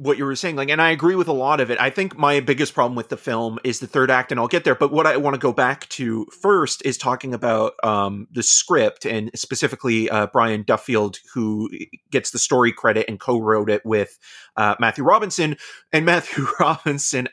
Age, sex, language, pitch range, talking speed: 30-49, male, English, 105-135 Hz, 220 wpm